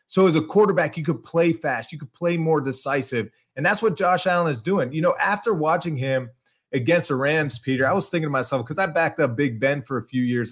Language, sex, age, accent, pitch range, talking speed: English, male, 30-49, American, 135-170 Hz, 250 wpm